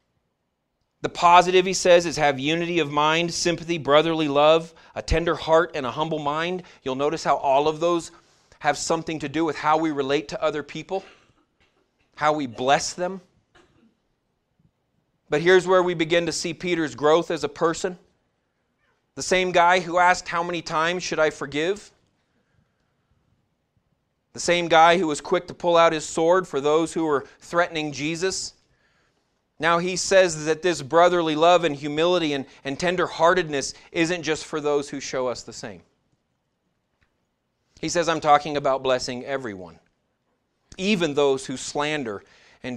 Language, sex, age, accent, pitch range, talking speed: English, male, 30-49, American, 145-175 Hz, 160 wpm